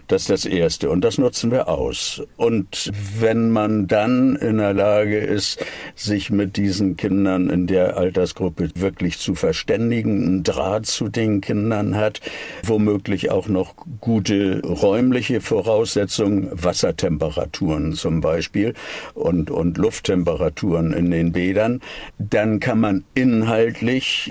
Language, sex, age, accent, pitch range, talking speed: German, male, 60-79, German, 100-120 Hz, 130 wpm